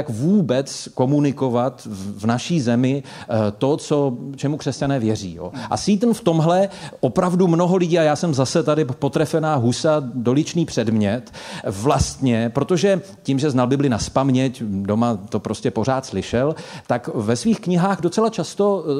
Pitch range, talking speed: 130-175 Hz, 150 wpm